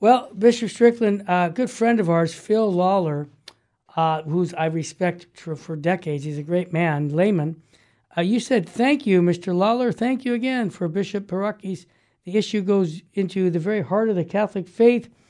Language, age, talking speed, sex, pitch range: English, 60-79, 180 wpm, male, 180-225 Hz